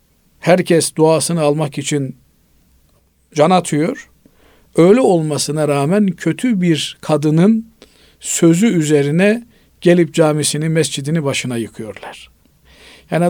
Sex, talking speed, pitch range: male, 90 wpm, 145-185 Hz